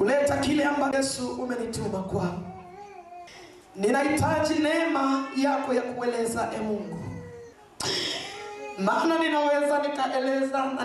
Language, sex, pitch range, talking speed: English, male, 250-325 Hz, 100 wpm